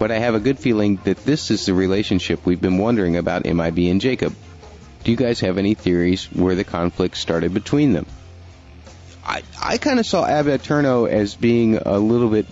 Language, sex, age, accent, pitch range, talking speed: English, male, 30-49, American, 90-115 Hz, 195 wpm